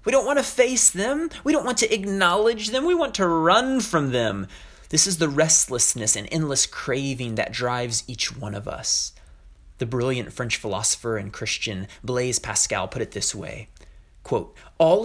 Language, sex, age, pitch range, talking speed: English, male, 30-49, 115-185 Hz, 175 wpm